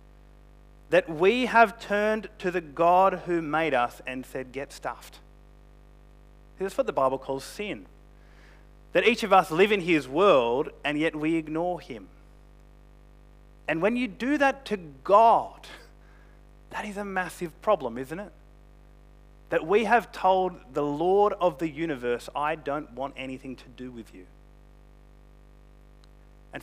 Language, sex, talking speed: English, male, 145 wpm